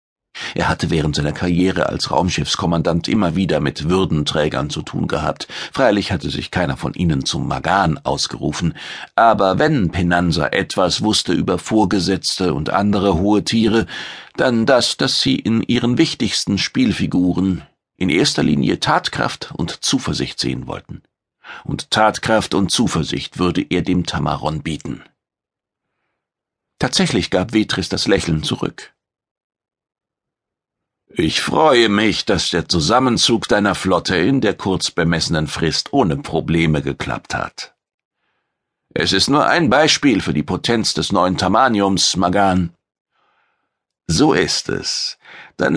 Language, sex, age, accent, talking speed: German, male, 50-69, German, 130 wpm